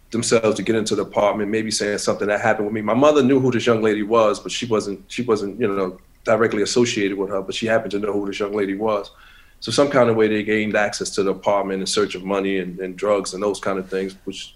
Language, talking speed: English, 270 wpm